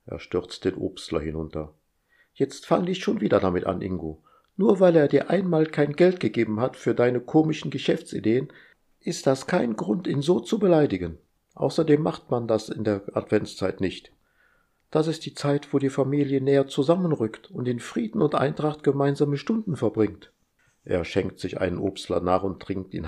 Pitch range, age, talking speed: 95-135 Hz, 50-69, 175 wpm